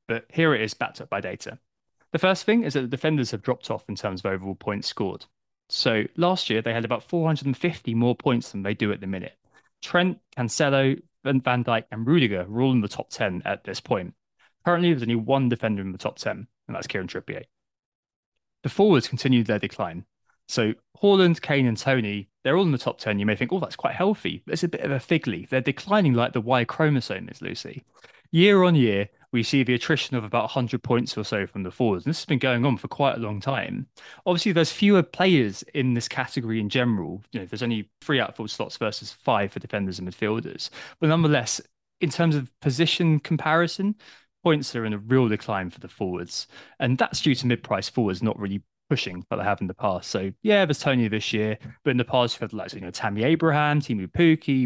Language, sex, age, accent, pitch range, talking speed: English, male, 20-39, British, 110-155 Hz, 225 wpm